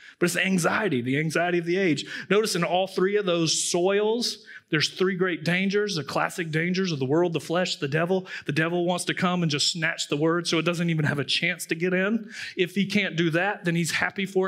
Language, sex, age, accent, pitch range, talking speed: English, male, 30-49, American, 155-190 Hz, 240 wpm